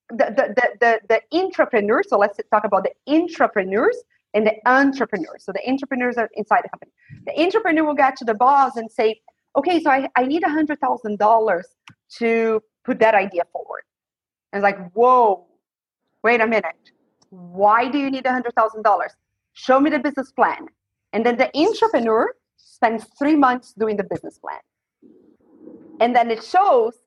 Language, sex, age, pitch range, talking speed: English, female, 30-49, 220-290 Hz, 175 wpm